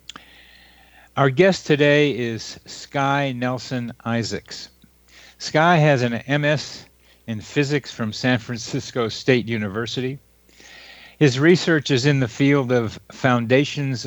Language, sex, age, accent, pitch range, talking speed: English, male, 50-69, American, 110-135 Hz, 110 wpm